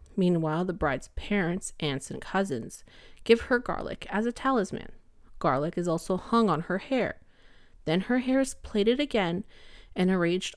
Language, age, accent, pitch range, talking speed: English, 30-49, American, 170-230 Hz, 160 wpm